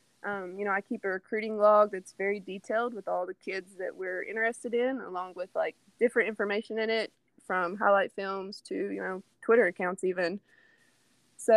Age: 20-39